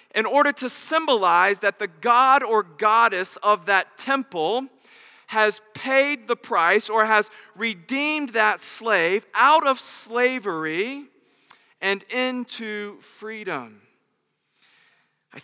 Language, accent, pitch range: English, American, 185-255 Hz